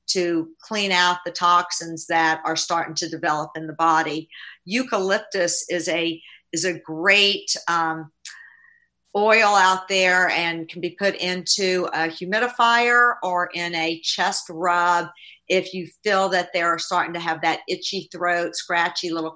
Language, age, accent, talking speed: English, 50-69, American, 150 wpm